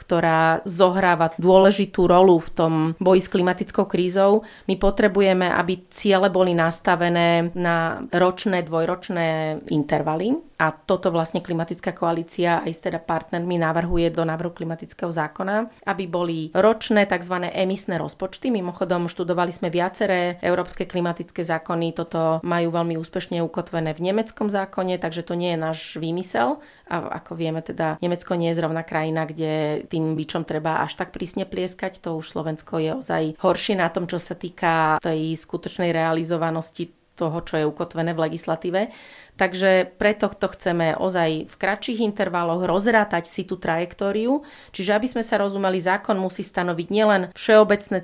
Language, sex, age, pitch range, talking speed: Slovak, female, 30-49, 165-195 Hz, 150 wpm